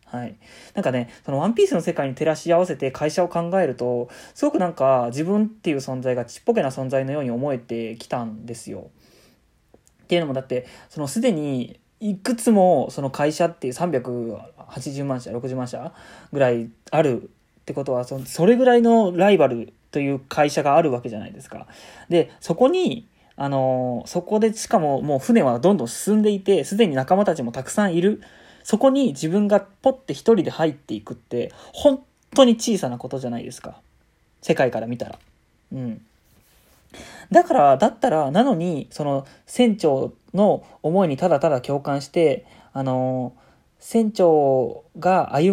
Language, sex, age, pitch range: Japanese, male, 20-39, 130-195 Hz